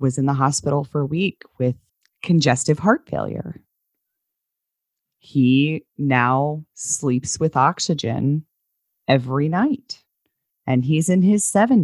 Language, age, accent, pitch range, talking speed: English, 30-49, American, 135-185 Hz, 110 wpm